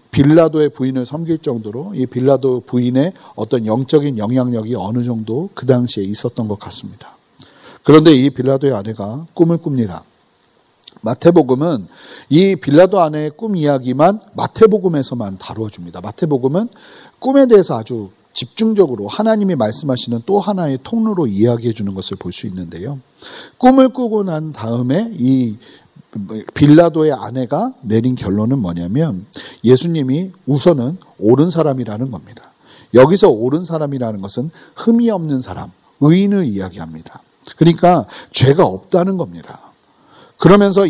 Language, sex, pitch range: Korean, male, 125-175 Hz